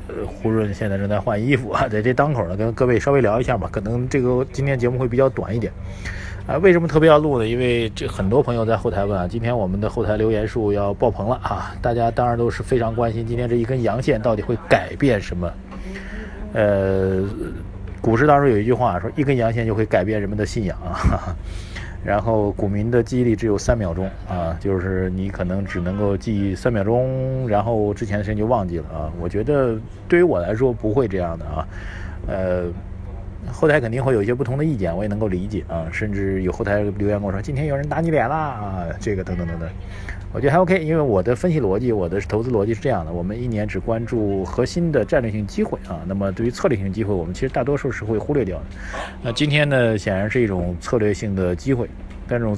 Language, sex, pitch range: Chinese, male, 95-120 Hz